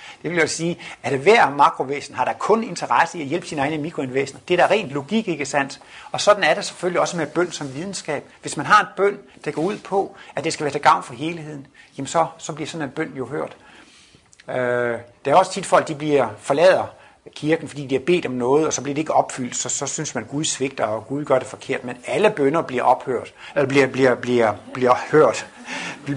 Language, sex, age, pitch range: Danish, male, 60-79, 125-165 Hz